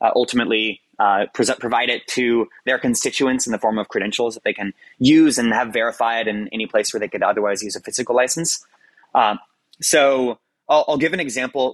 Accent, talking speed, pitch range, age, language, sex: American, 200 wpm, 120-155 Hz, 20-39, English, male